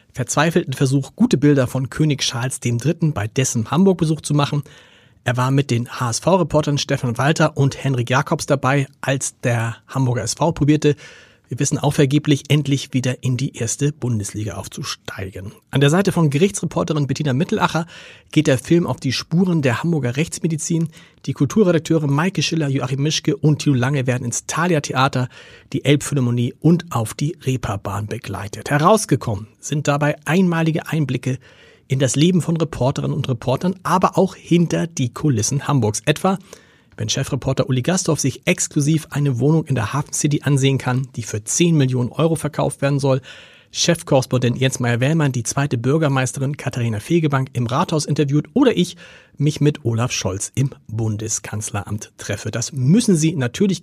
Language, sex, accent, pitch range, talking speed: German, male, German, 125-160 Hz, 155 wpm